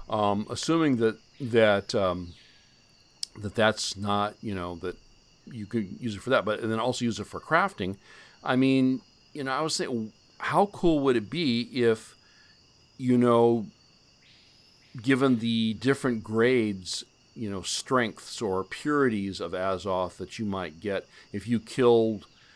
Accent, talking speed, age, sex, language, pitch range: American, 155 wpm, 50-69, male, English, 95-115 Hz